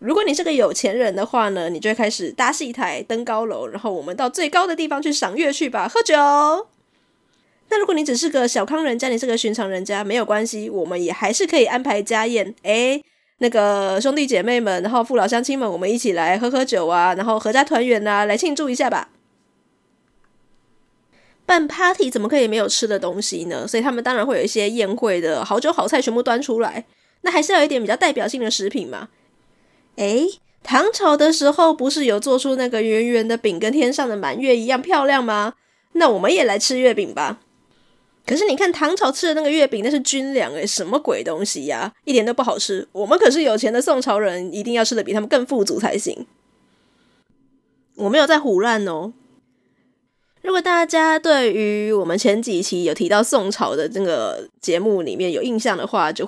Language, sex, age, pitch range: Chinese, female, 20-39, 210-285 Hz